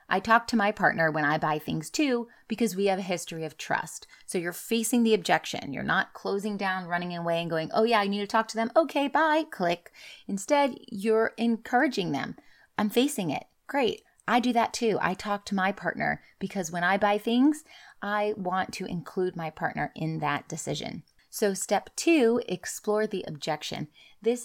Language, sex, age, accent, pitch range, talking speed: English, female, 30-49, American, 175-230 Hz, 195 wpm